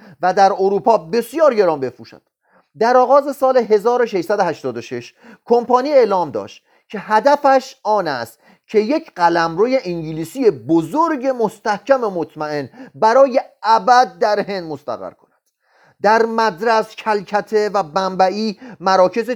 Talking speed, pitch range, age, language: 115 wpm, 170-225 Hz, 40-59, Persian